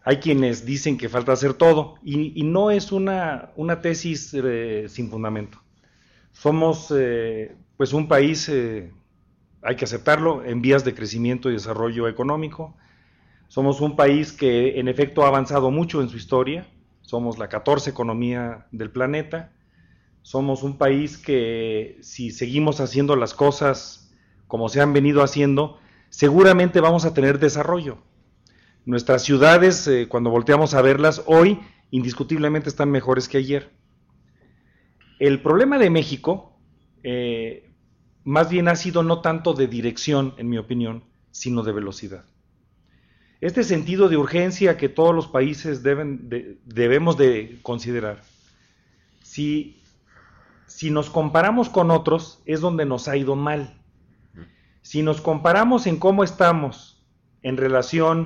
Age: 40-59